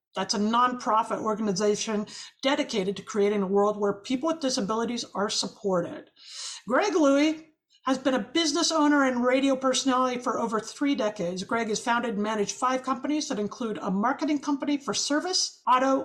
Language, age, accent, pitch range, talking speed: English, 50-69, American, 220-305 Hz, 165 wpm